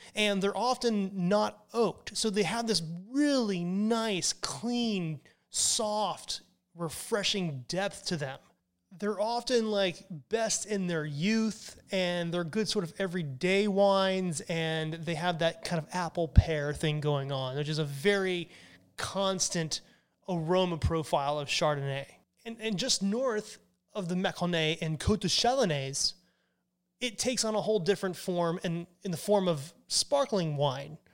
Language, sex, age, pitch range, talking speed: English, male, 30-49, 160-205 Hz, 150 wpm